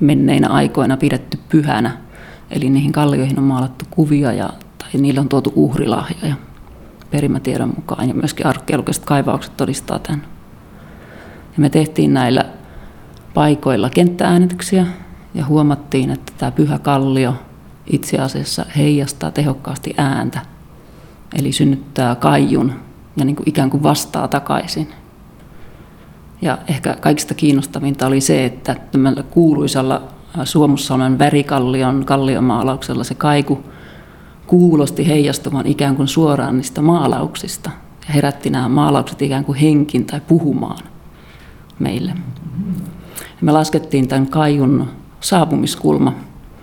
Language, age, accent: Finnish, 30-49, native